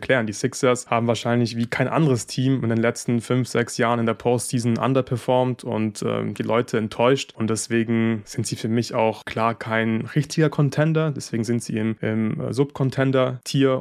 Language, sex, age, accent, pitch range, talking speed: German, male, 20-39, German, 110-130 Hz, 180 wpm